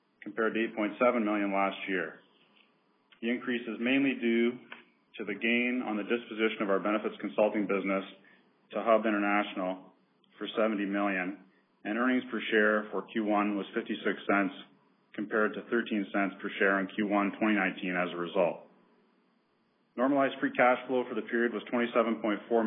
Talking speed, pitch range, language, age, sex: 155 wpm, 100-115 Hz, English, 40-59, male